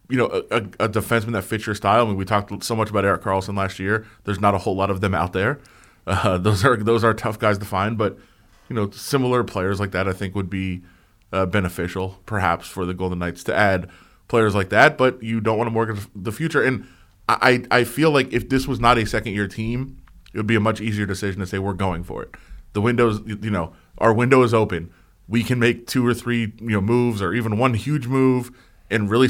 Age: 20-39